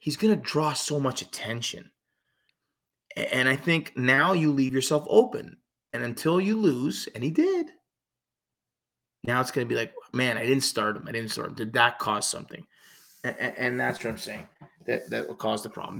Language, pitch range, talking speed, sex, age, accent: English, 115-155 Hz, 195 wpm, male, 30-49, American